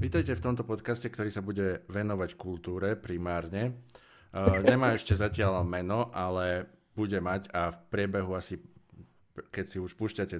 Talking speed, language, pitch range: 150 wpm, Slovak, 90-110 Hz